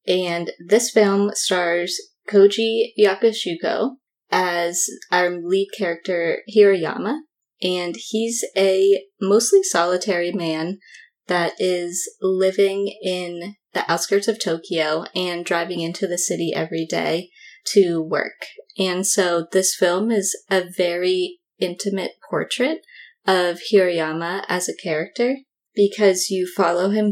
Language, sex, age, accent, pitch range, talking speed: English, female, 20-39, American, 175-210 Hz, 115 wpm